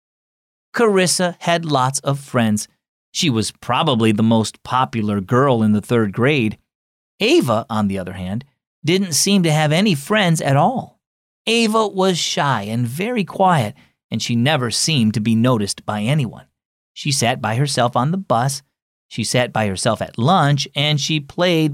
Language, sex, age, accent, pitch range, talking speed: English, male, 30-49, American, 110-150 Hz, 165 wpm